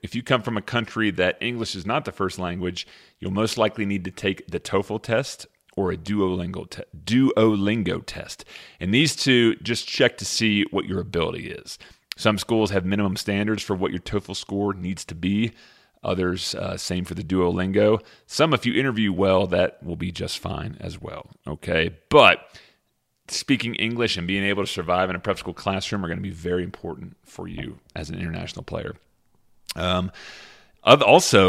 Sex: male